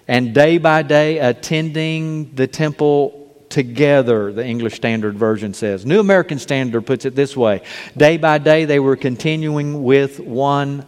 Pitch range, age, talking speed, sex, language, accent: 125-170 Hz, 50-69, 155 wpm, male, English, American